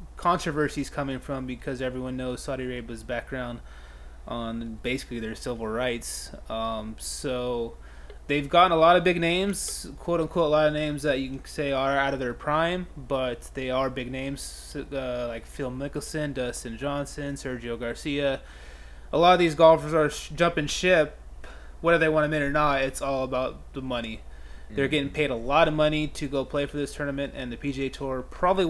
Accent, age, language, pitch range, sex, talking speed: American, 20-39, English, 120-145 Hz, male, 190 wpm